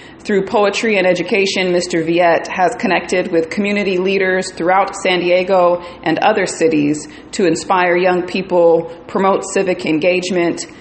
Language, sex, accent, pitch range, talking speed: English, female, American, 170-205 Hz, 135 wpm